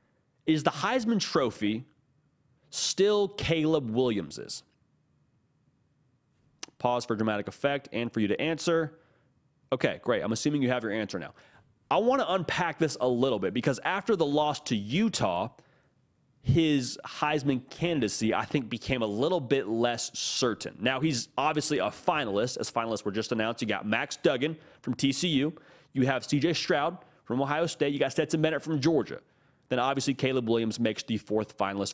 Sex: male